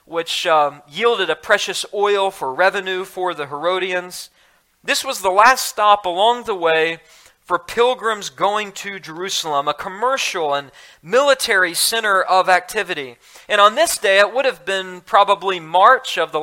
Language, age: English, 40-59